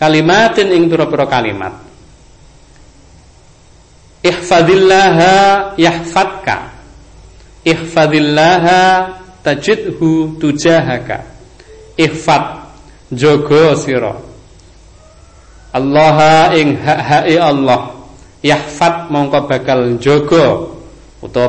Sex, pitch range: male, 130-160 Hz